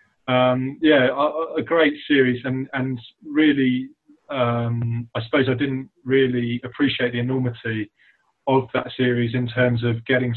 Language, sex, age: English, male, 20-39